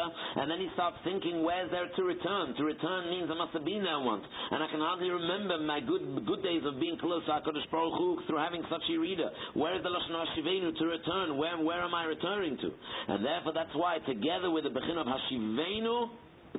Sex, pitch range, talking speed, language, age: male, 160-185 Hz, 215 wpm, English, 60-79